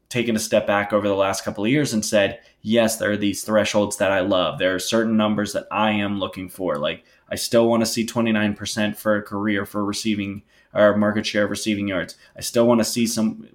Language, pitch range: English, 100-110 Hz